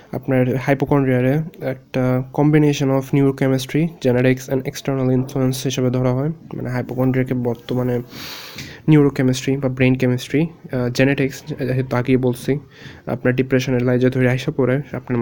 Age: 20-39